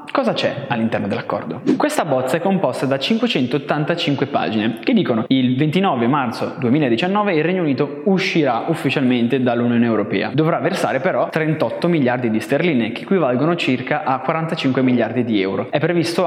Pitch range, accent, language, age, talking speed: 125-170 Hz, native, Italian, 20-39, 150 wpm